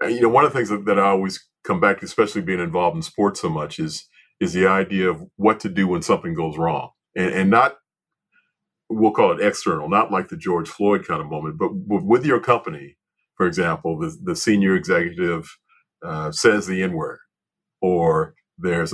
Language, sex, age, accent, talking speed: English, male, 40-59, American, 195 wpm